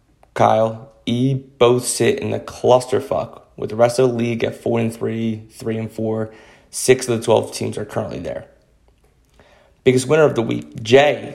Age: 20-39